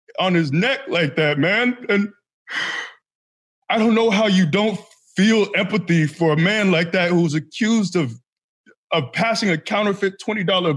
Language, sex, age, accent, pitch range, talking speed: English, male, 20-39, American, 175-235 Hz, 160 wpm